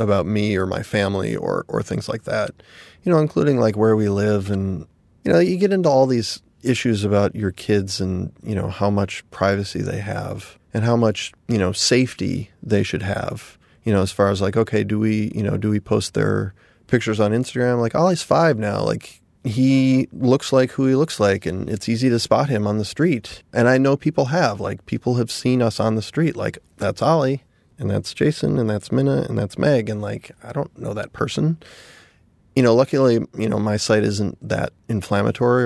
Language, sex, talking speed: English, male, 215 wpm